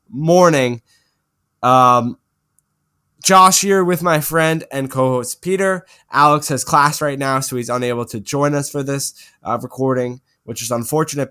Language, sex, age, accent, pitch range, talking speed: English, male, 10-29, American, 115-140 Hz, 150 wpm